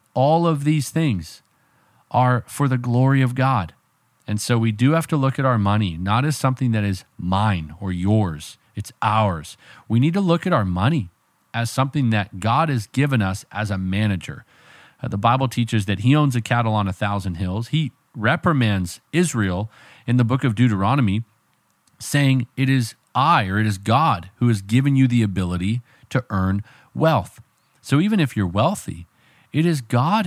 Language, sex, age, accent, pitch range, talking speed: English, male, 40-59, American, 100-130 Hz, 180 wpm